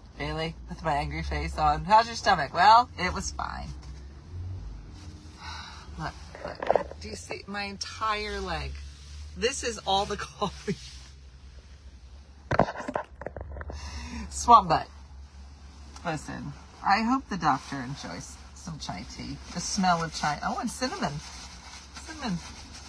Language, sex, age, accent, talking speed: English, female, 40-59, American, 120 wpm